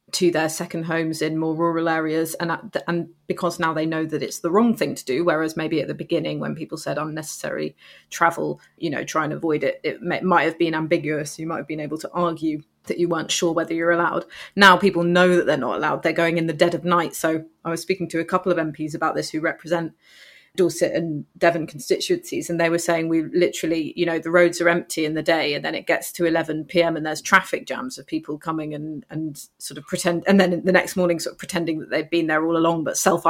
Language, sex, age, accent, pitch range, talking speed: English, female, 30-49, British, 160-180 Hz, 255 wpm